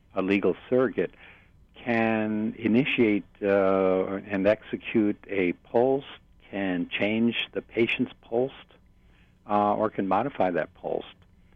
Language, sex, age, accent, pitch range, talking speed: English, male, 60-79, American, 90-105 Hz, 110 wpm